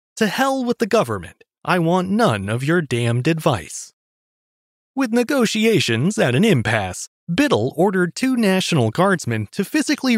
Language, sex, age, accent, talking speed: English, male, 30-49, American, 140 wpm